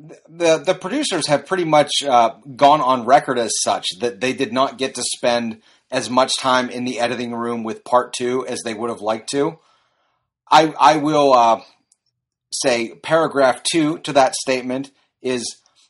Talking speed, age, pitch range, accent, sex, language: 175 wpm, 30-49, 125-150 Hz, American, male, English